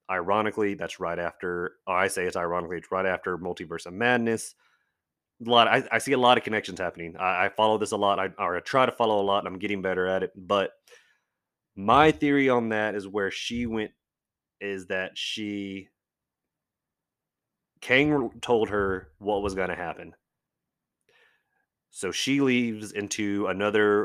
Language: English